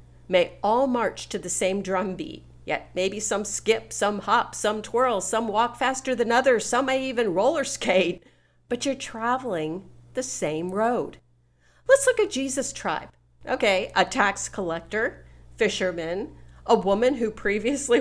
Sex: female